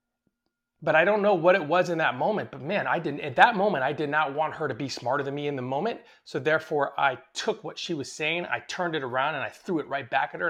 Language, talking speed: English, 285 wpm